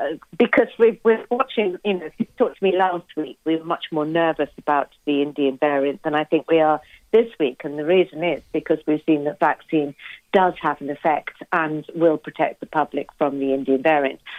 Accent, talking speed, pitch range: British, 210 wpm, 150-180 Hz